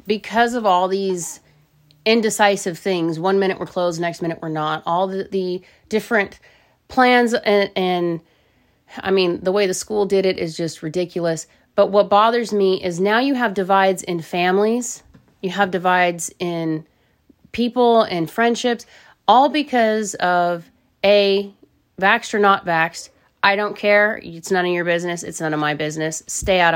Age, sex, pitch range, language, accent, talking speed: 30-49, female, 175-225 Hz, English, American, 165 wpm